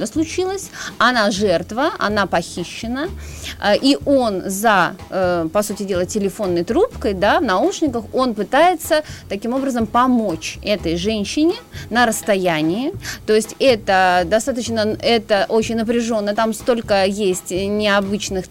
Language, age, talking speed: Russian, 30-49, 115 wpm